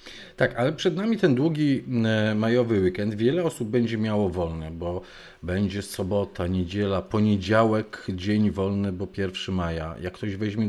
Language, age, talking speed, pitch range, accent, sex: Polish, 40-59, 145 wpm, 95-115 Hz, native, male